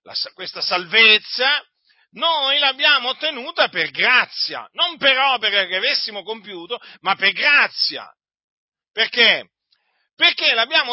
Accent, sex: native, male